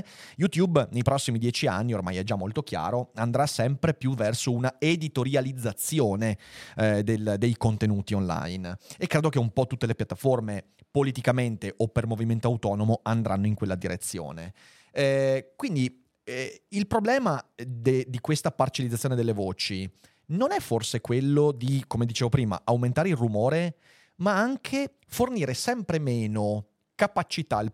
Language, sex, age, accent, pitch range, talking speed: Italian, male, 30-49, native, 110-145 Hz, 140 wpm